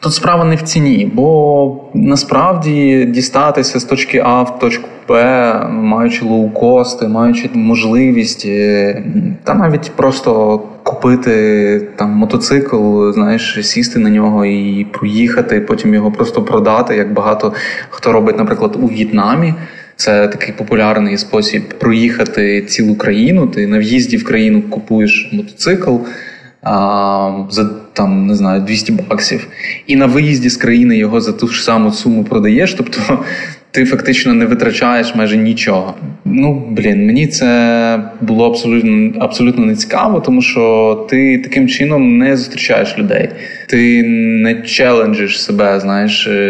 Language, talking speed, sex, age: Ukrainian, 130 wpm, male, 20-39